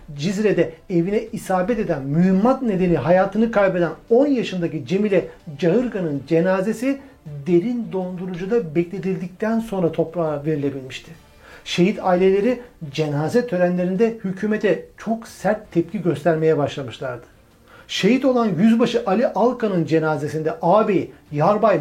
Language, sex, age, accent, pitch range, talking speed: Turkish, male, 60-79, native, 165-220 Hz, 100 wpm